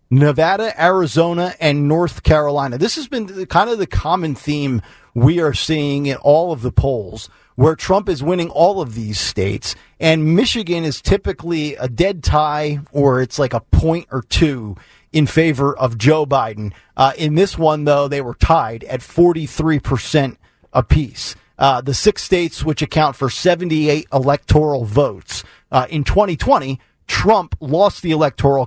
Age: 40-59